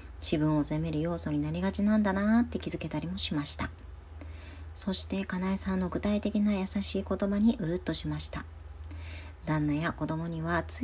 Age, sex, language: 40-59, male, Japanese